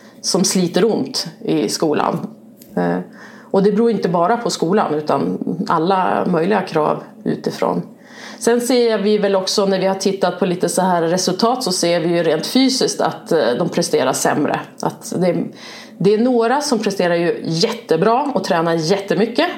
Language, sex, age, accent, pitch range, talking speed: Swedish, female, 30-49, native, 170-220 Hz, 165 wpm